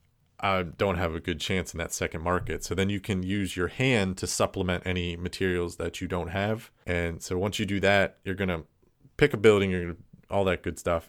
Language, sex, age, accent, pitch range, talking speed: English, male, 30-49, American, 90-100 Hz, 235 wpm